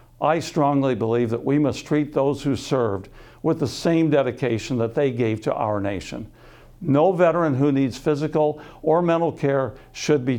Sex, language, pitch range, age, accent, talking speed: male, English, 120-150 Hz, 60-79, American, 175 wpm